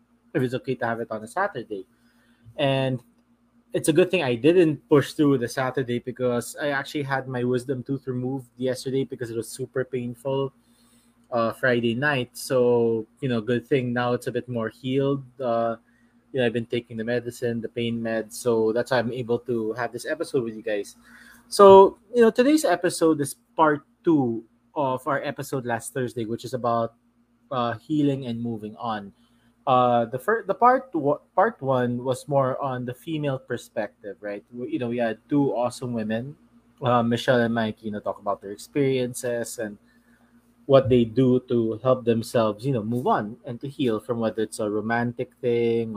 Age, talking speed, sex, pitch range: 20-39, 190 wpm, male, 115-135 Hz